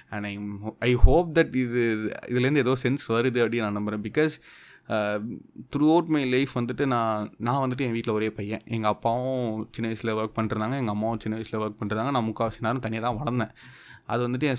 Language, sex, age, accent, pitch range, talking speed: Tamil, male, 20-39, native, 110-135 Hz, 205 wpm